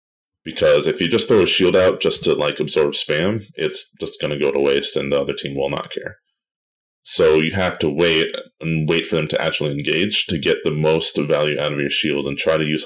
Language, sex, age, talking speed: English, male, 20-39, 245 wpm